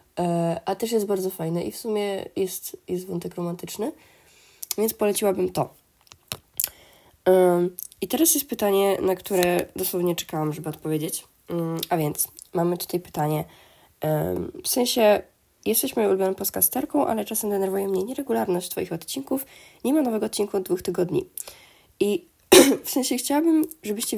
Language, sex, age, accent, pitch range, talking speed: Polish, female, 20-39, native, 180-220 Hz, 135 wpm